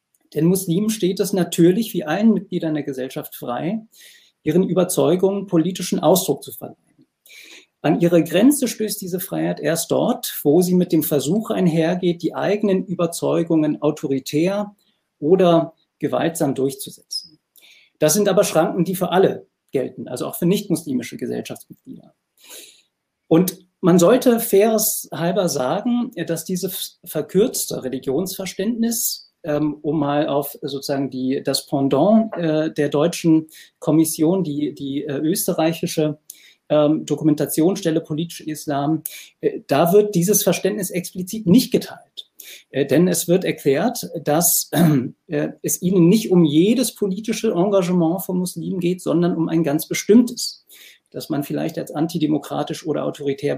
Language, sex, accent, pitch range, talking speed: German, male, German, 155-195 Hz, 125 wpm